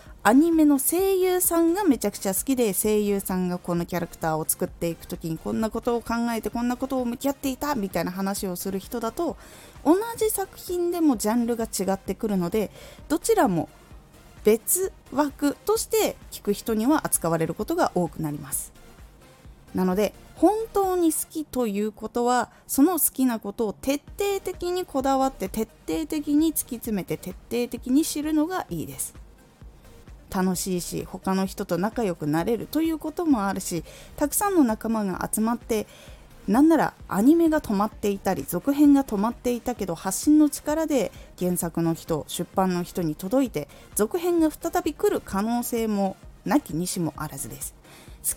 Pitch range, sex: 185-295 Hz, female